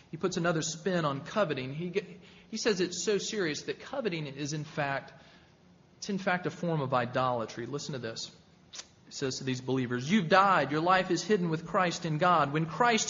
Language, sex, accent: English, male, American